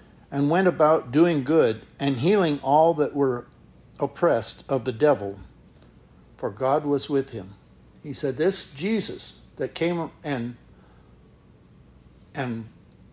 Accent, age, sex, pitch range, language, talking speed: American, 60-79, male, 120-165 Hz, English, 125 wpm